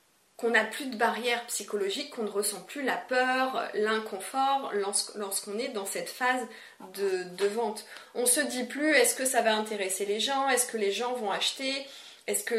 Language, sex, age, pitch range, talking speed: French, female, 30-49, 205-245 Hz, 195 wpm